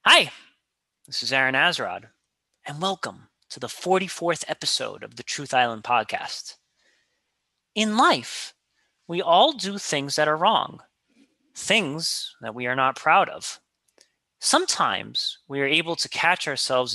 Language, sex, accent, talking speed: English, male, American, 140 wpm